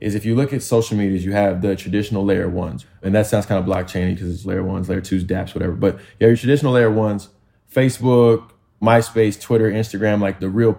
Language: English